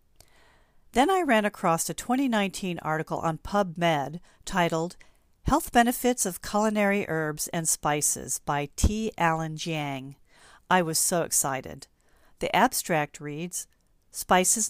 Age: 40-59